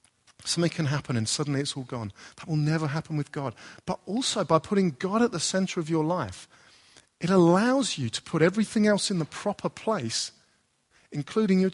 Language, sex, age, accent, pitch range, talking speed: English, male, 40-59, British, 130-180 Hz, 195 wpm